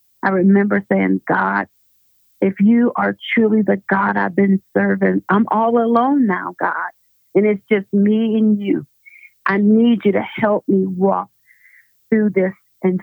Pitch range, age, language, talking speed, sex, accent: 170-200 Hz, 50-69, English, 155 wpm, female, American